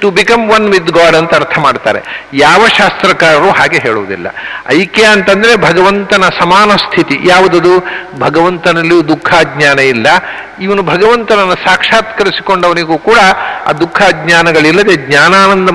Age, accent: 60-79, Indian